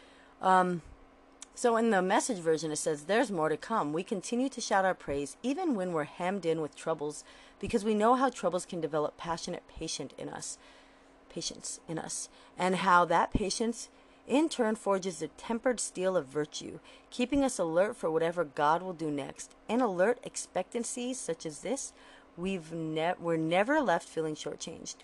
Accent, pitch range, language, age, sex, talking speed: American, 165-235 Hz, English, 30-49, female, 175 wpm